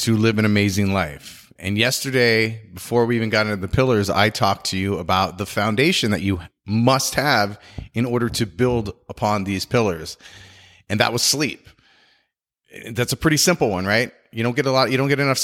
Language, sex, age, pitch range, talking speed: English, male, 30-49, 100-140 Hz, 200 wpm